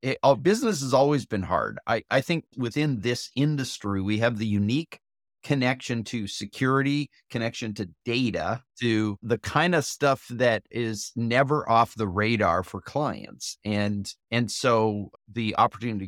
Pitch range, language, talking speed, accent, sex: 105-135 Hz, English, 155 wpm, American, male